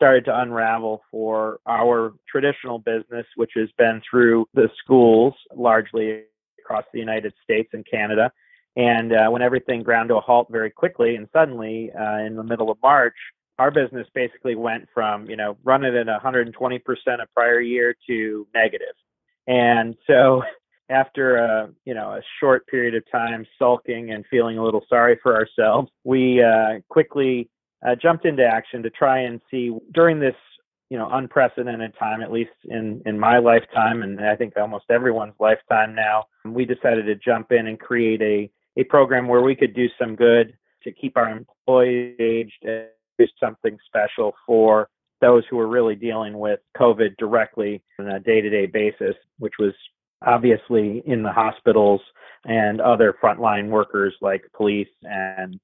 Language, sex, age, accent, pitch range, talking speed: English, male, 30-49, American, 110-125 Hz, 165 wpm